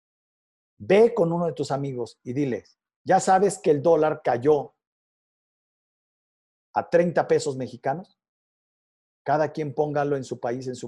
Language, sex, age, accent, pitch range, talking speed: Spanish, male, 50-69, Mexican, 130-180 Hz, 145 wpm